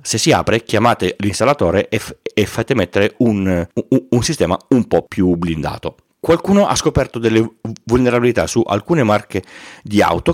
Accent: native